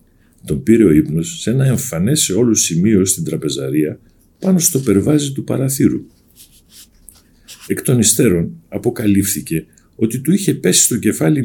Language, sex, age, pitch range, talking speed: Greek, male, 50-69, 95-155 Hz, 140 wpm